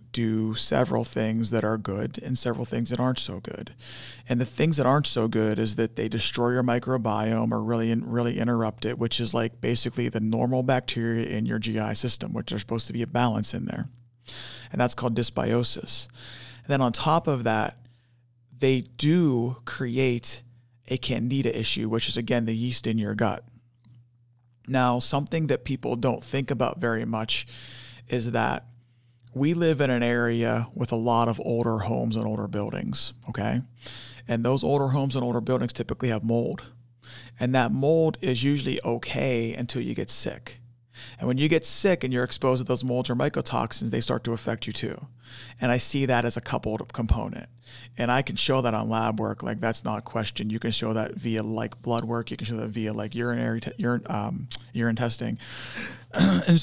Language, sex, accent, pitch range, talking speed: English, male, American, 115-125 Hz, 190 wpm